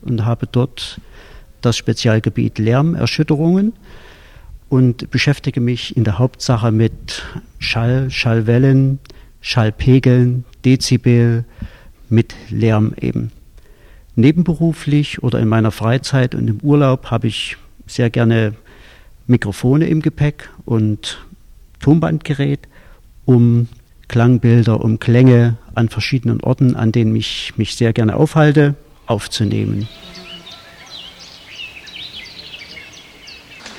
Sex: male